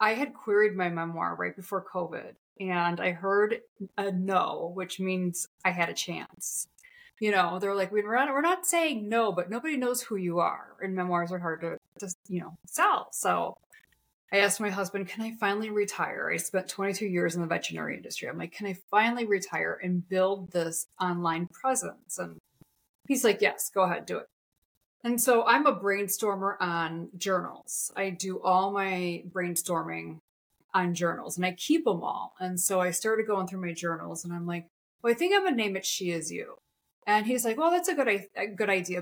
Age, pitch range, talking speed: 30-49, 180-230 Hz, 200 wpm